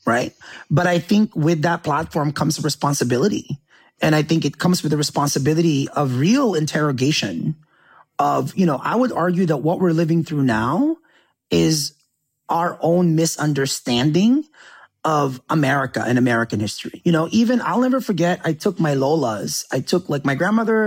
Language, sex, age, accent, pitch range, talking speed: English, male, 30-49, American, 145-210 Hz, 160 wpm